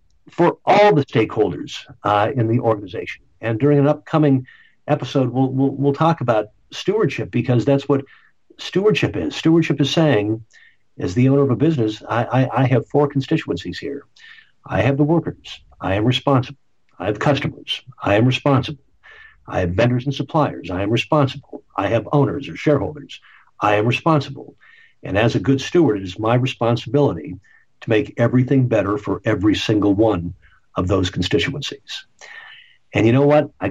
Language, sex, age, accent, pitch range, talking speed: English, male, 60-79, American, 115-145 Hz, 165 wpm